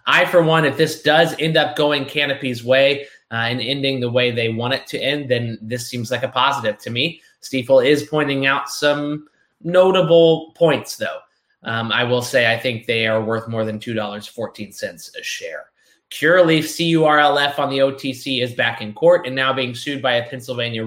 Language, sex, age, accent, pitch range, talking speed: English, male, 20-39, American, 120-155 Hz, 215 wpm